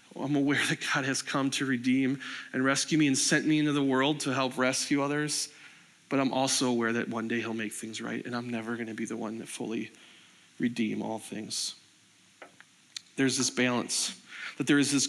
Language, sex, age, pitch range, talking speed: English, male, 40-59, 115-140 Hz, 205 wpm